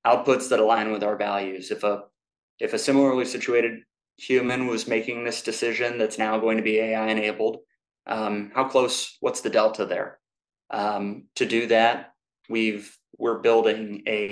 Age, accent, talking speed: 20-39, American, 165 wpm